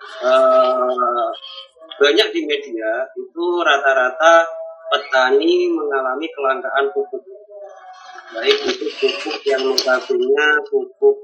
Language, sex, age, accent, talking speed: Indonesian, male, 30-49, native, 85 wpm